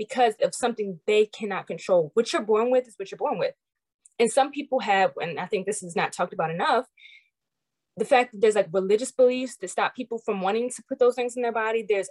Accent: American